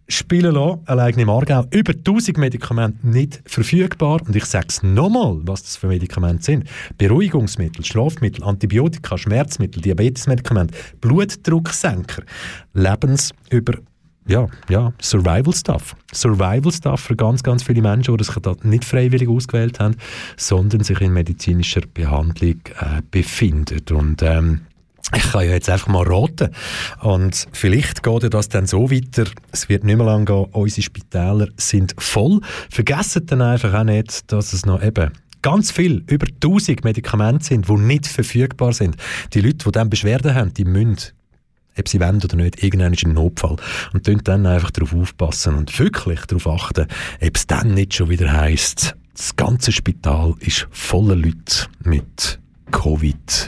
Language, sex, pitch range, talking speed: German, male, 90-125 Hz, 155 wpm